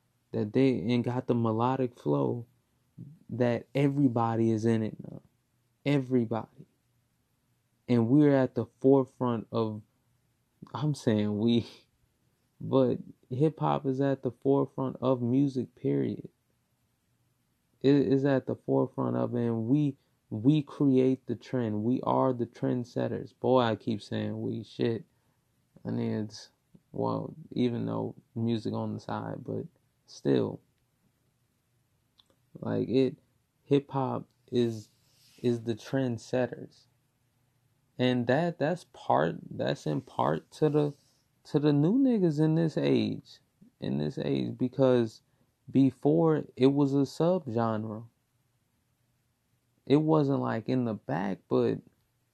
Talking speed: 120 wpm